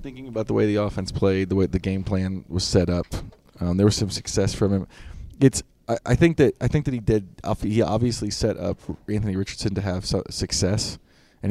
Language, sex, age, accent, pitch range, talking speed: English, male, 20-39, American, 95-120 Hz, 220 wpm